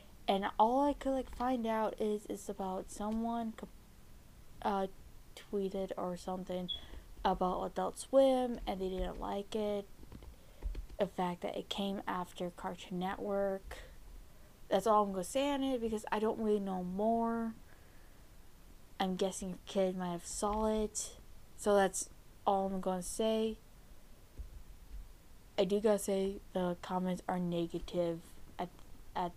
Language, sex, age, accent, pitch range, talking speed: English, female, 10-29, American, 175-210 Hz, 135 wpm